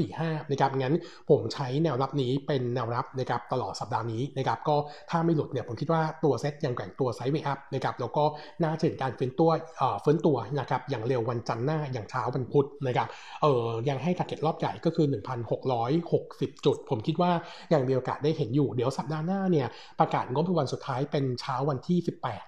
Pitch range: 125-160 Hz